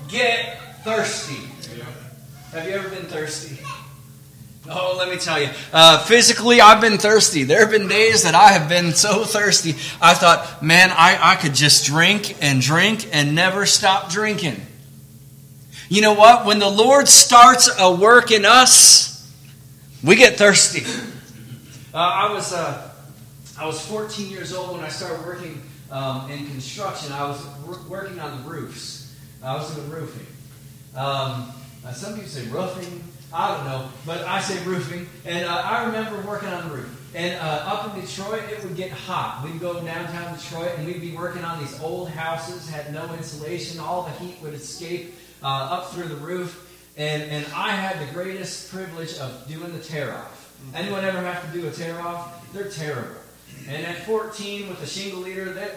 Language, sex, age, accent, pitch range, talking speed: English, male, 30-49, American, 140-190 Hz, 175 wpm